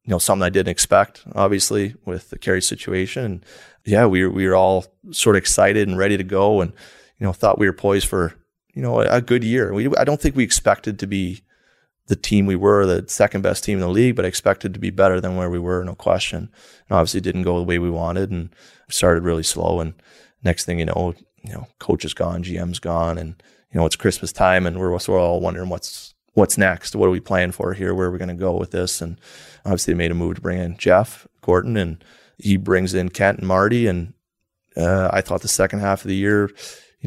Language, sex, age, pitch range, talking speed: English, male, 30-49, 90-100 Hz, 245 wpm